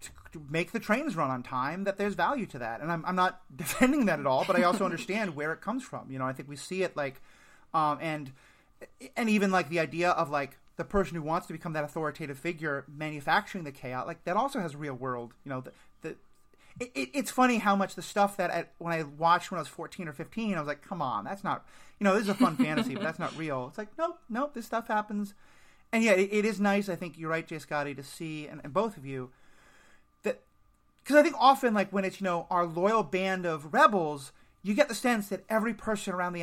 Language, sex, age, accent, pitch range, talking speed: English, male, 30-49, American, 150-210 Hz, 250 wpm